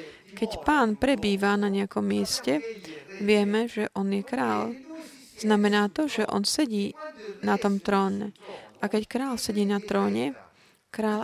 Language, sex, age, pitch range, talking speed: Slovak, female, 30-49, 190-225 Hz, 140 wpm